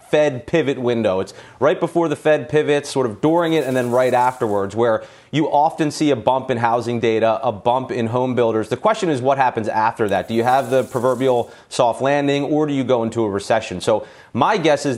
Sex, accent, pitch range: male, American, 120-150 Hz